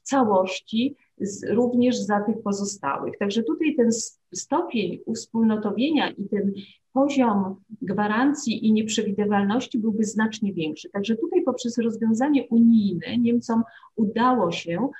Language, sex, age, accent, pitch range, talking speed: Polish, female, 40-59, native, 195-255 Hz, 110 wpm